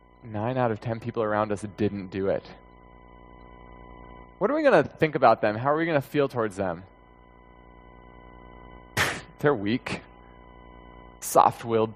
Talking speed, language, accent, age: 145 wpm, English, American, 20-39